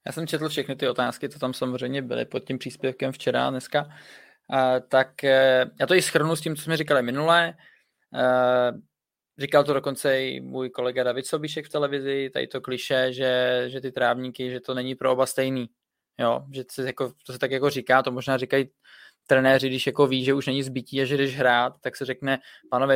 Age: 20-39